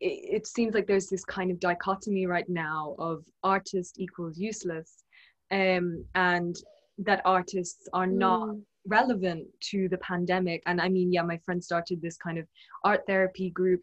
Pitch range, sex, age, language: 175-200 Hz, female, 20-39, English